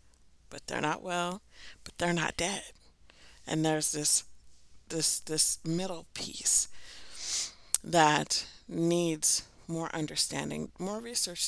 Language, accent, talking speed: English, American, 110 wpm